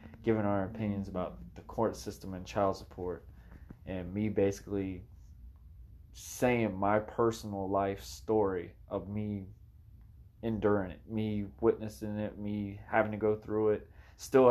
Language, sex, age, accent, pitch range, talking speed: English, male, 20-39, American, 95-110 Hz, 130 wpm